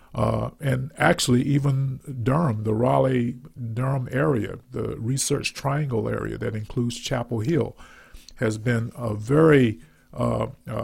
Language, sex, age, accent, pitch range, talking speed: English, male, 50-69, American, 110-140 Hz, 115 wpm